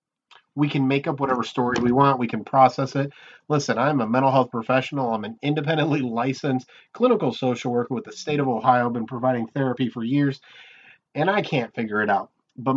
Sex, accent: male, American